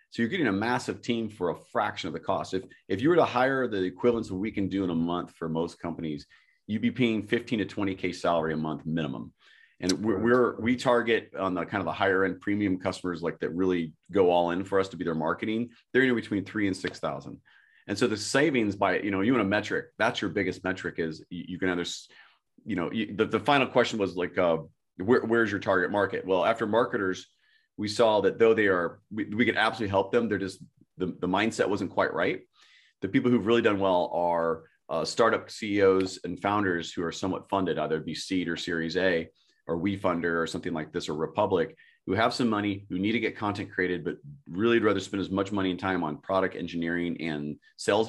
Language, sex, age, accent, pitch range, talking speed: English, male, 30-49, American, 90-115 Hz, 230 wpm